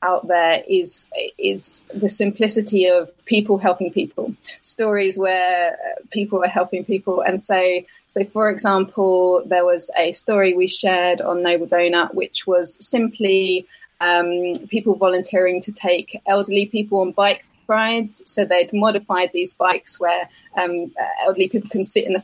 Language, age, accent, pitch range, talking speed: English, 20-39, British, 180-210 Hz, 150 wpm